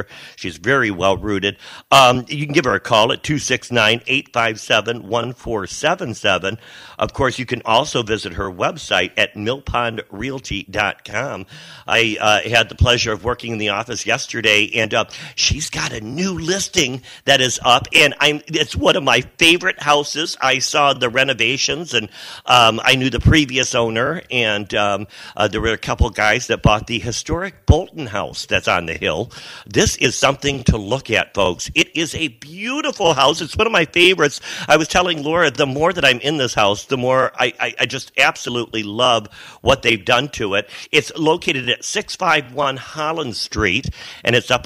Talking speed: 175 wpm